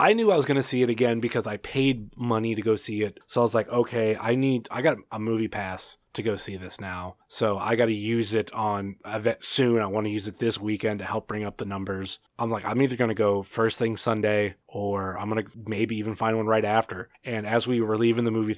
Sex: male